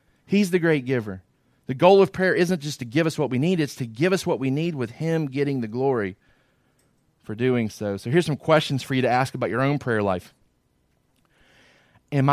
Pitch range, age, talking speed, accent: 125-170 Hz, 30-49, 220 wpm, American